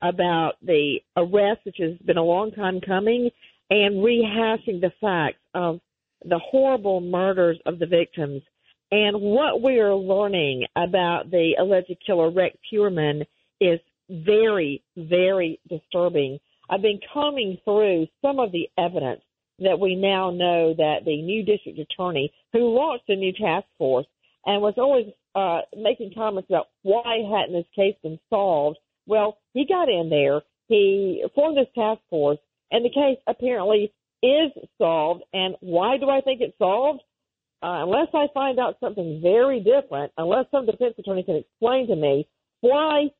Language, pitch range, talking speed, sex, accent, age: English, 175-235 Hz, 155 wpm, female, American, 50-69